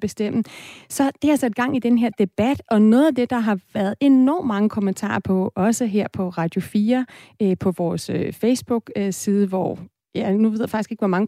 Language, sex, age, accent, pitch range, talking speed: Danish, female, 30-49, native, 195-240 Hz, 200 wpm